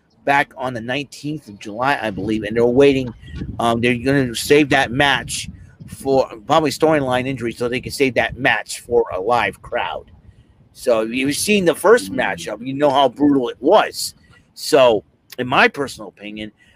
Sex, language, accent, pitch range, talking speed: male, English, American, 115-145 Hz, 180 wpm